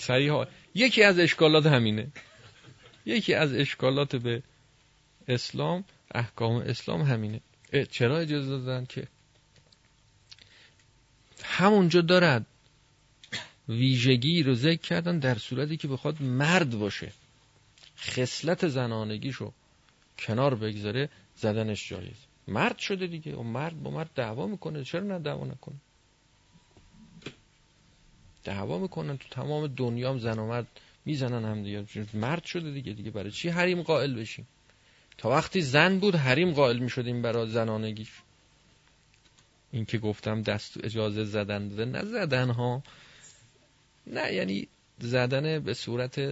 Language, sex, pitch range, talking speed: Persian, male, 110-145 Hz, 120 wpm